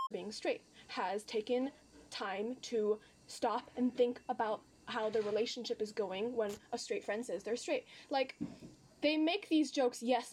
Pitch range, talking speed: 215-260 Hz, 155 wpm